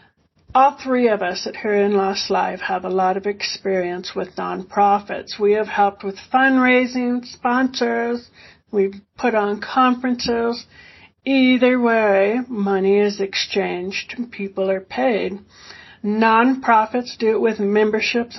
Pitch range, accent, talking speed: 195-235 Hz, American, 130 wpm